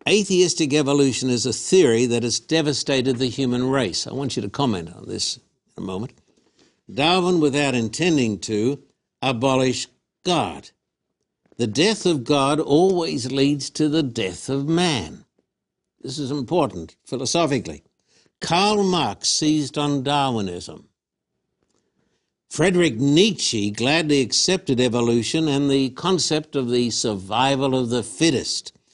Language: English